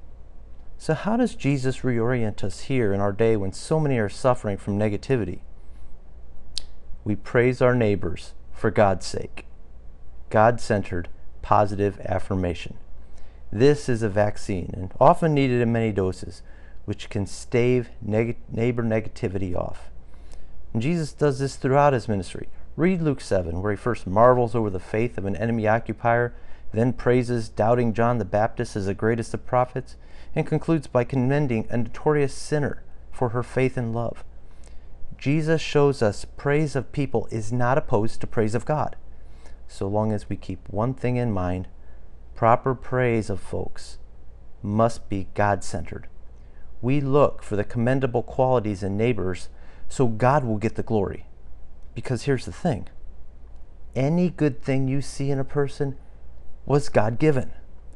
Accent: American